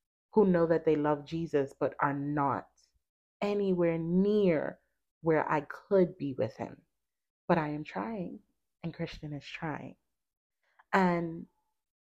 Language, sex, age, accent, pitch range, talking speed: English, female, 30-49, American, 155-195 Hz, 130 wpm